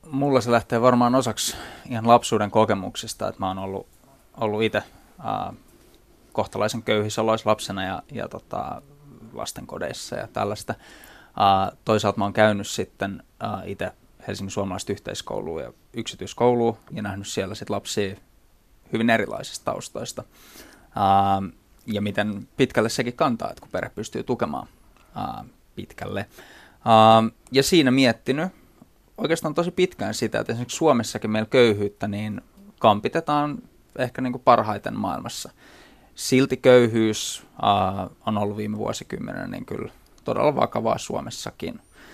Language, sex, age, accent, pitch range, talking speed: Finnish, male, 20-39, native, 100-120 Hz, 120 wpm